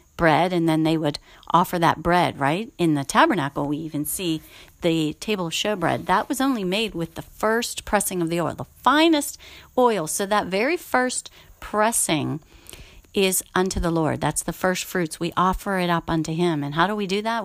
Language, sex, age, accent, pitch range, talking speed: English, female, 40-59, American, 165-215 Hz, 200 wpm